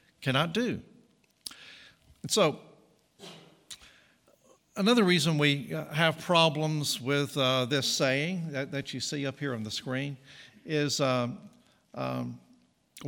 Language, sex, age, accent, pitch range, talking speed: English, male, 60-79, American, 135-180 Hz, 110 wpm